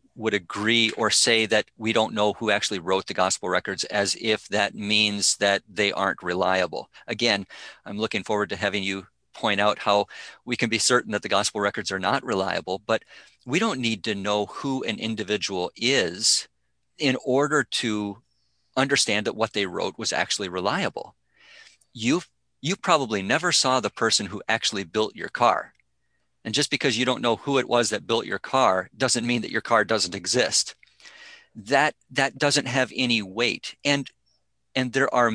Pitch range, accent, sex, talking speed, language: 105-130 Hz, American, male, 180 wpm, English